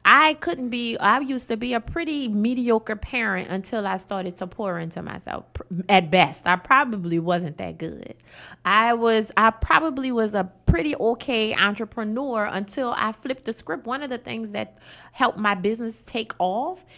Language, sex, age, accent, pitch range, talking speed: English, female, 20-39, American, 180-230 Hz, 175 wpm